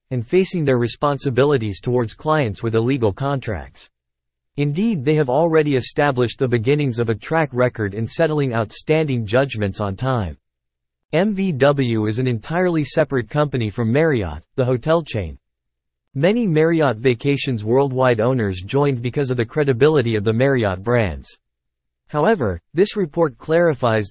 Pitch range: 110-150 Hz